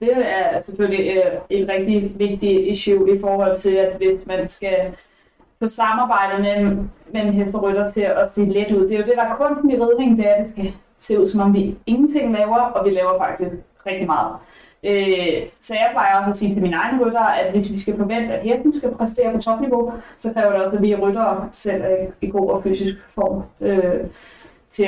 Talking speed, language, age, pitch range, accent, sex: 220 wpm, Danish, 20-39, 195-220 Hz, native, female